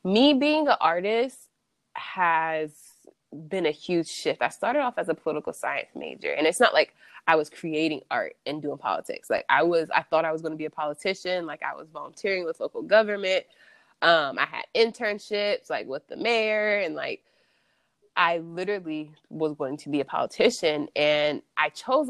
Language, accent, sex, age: English, American, female, 20-39